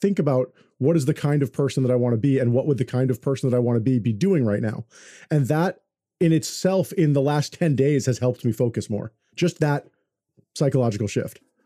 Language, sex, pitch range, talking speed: English, male, 120-155 Hz, 240 wpm